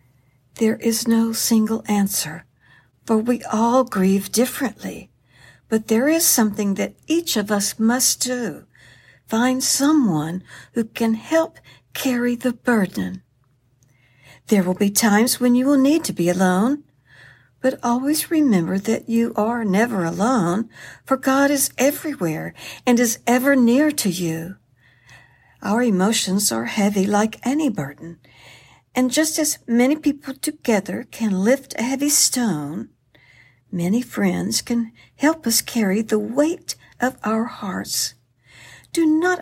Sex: female